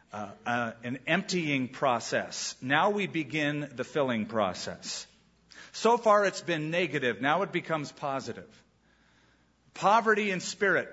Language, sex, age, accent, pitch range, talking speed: English, male, 50-69, American, 120-170 Hz, 125 wpm